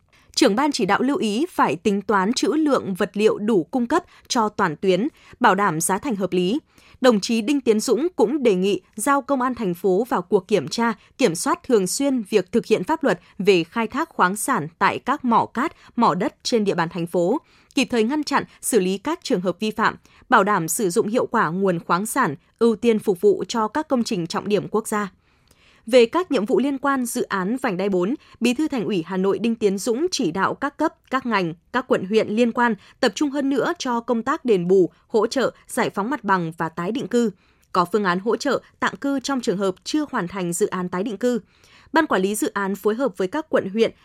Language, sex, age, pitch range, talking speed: Vietnamese, female, 20-39, 195-260 Hz, 240 wpm